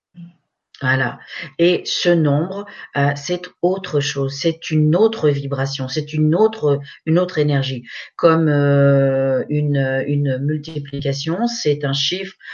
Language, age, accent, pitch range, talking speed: French, 50-69, French, 140-175 Hz, 125 wpm